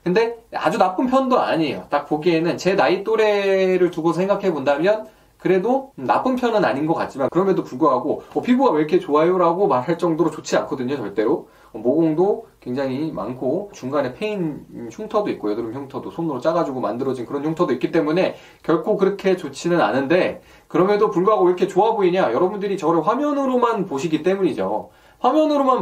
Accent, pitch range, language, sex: native, 160-215 Hz, Korean, male